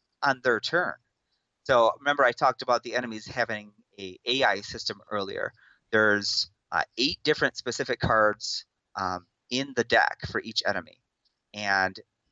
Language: English